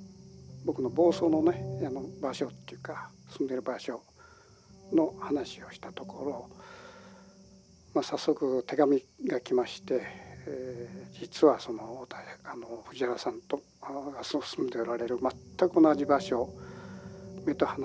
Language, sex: Japanese, male